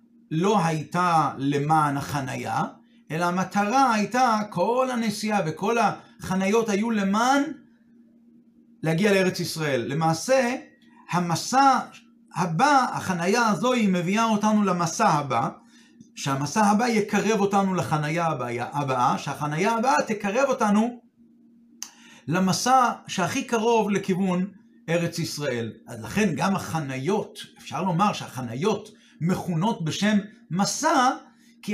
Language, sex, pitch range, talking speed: Hebrew, male, 165-230 Hz, 100 wpm